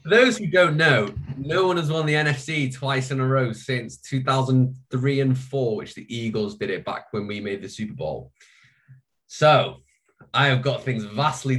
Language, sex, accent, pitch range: English, male, British, 110-140 Hz